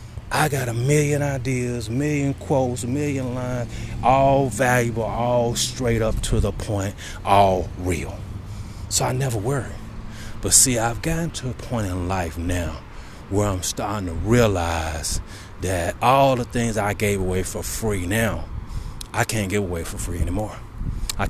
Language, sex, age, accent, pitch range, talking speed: English, male, 30-49, American, 95-120 Hz, 160 wpm